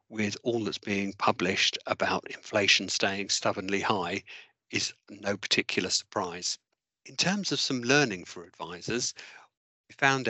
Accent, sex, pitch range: British, male, 100-115 Hz